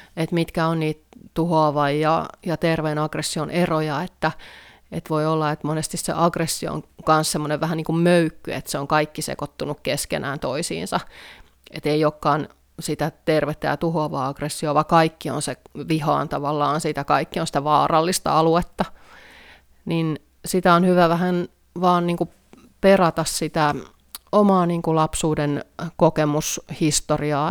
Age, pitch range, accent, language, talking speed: 30-49, 150-165 Hz, native, Finnish, 135 wpm